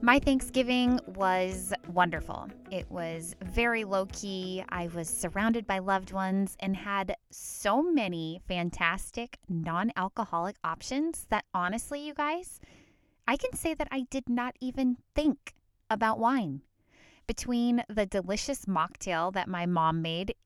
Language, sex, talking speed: English, female, 130 wpm